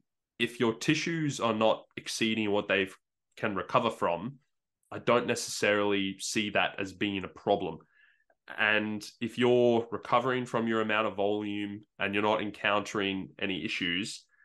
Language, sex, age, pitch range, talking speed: English, male, 20-39, 100-110 Hz, 145 wpm